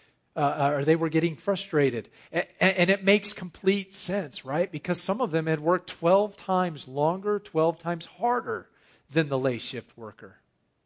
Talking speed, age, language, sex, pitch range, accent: 160 wpm, 40-59, English, male, 125-155 Hz, American